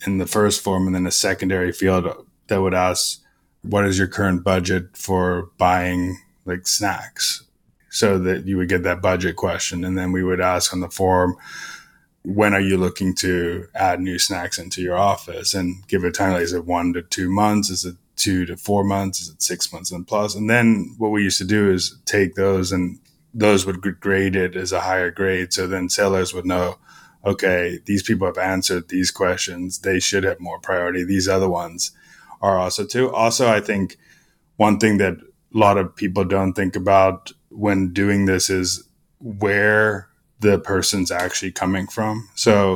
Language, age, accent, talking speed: English, 20-39, American, 195 wpm